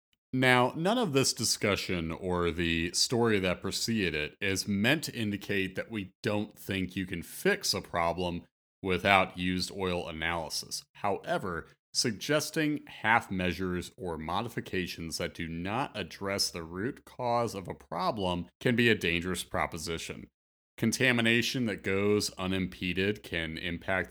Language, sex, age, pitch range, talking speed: English, male, 30-49, 85-110 Hz, 135 wpm